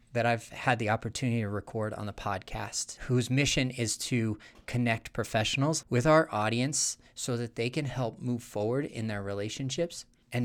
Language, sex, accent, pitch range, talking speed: English, male, American, 110-130 Hz, 170 wpm